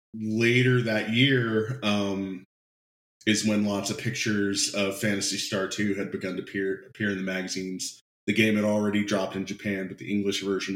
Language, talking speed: English, 180 wpm